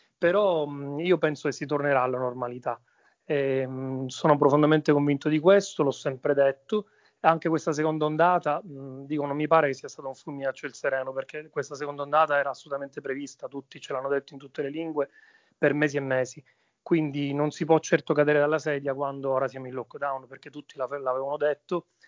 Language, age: Italian, 30-49